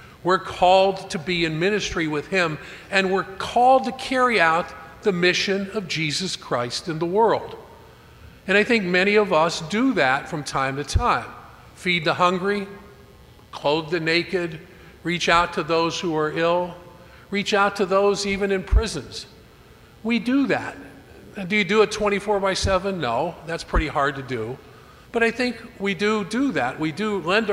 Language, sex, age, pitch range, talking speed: English, male, 50-69, 160-205 Hz, 175 wpm